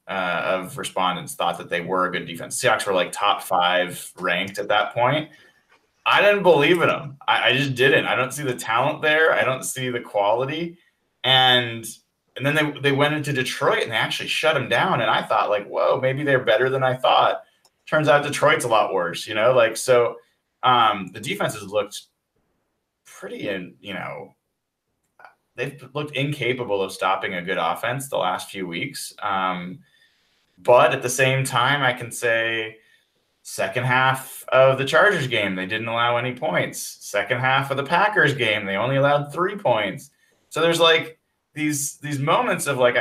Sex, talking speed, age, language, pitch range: male, 185 wpm, 20-39, English, 115-150 Hz